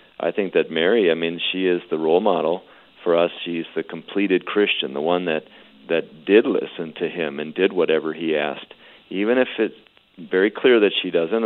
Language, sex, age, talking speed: English, male, 50-69, 200 wpm